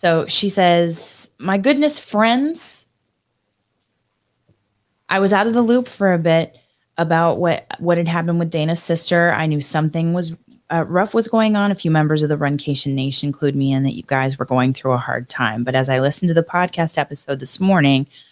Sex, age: female, 20-39